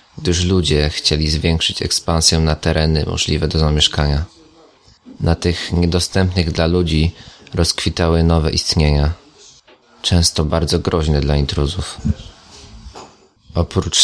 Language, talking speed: Polish, 105 wpm